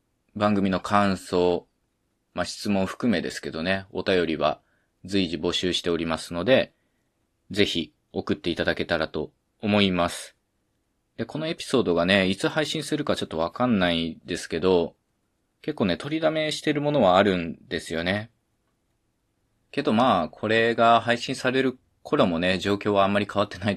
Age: 20-39